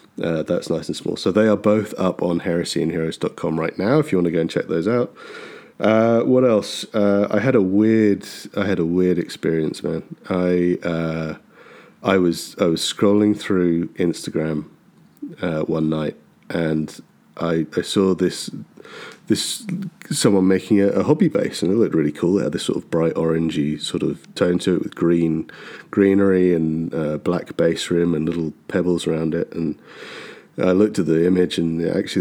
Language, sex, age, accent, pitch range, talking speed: English, male, 30-49, British, 80-105 Hz, 185 wpm